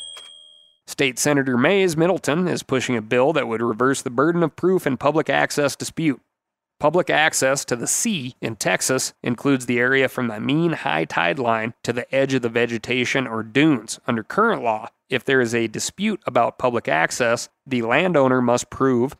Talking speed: 180 wpm